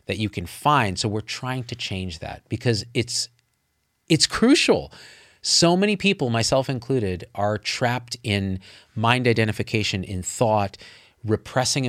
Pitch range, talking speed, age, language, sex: 100-125 Hz, 135 wpm, 40-59, English, male